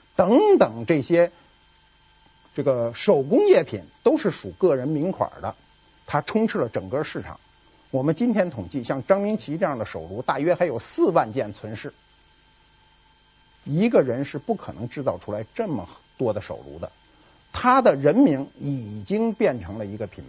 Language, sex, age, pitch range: Chinese, male, 50-69, 140-225 Hz